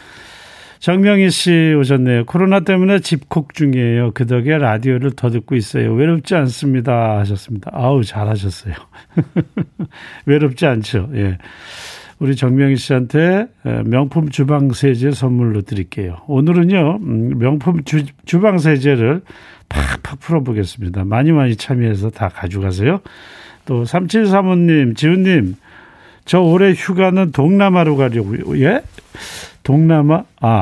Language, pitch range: Korean, 105-160 Hz